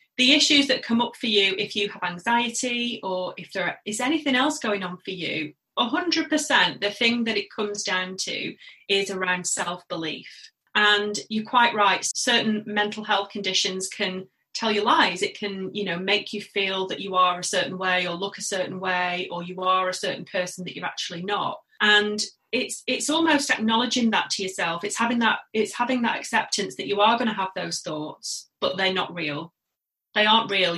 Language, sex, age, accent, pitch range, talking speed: English, female, 30-49, British, 185-235 Hz, 200 wpm